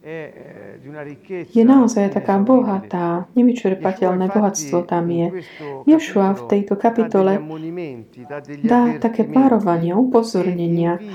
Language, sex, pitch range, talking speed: Slovak, female, 175-225 Hz, 85 wpm